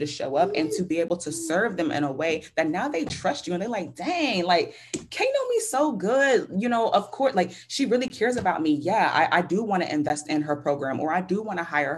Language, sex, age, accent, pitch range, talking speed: English, female, 20-39, American, 150-200 Hz, 275 wpm